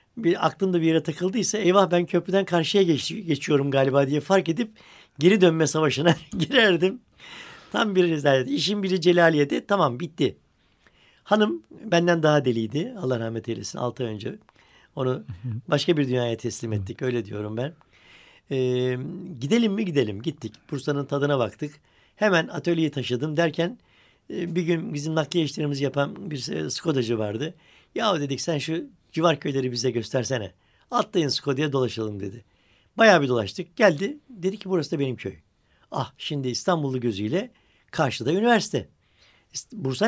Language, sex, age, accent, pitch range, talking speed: Turkish, male, 60-79, native, 125-185 Hz, 140 wpm